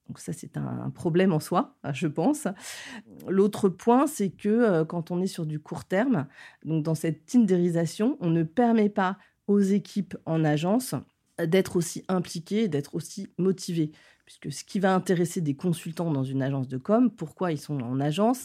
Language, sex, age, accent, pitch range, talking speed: French, female, 30-49, French, 145-190 Hz, 180 wpm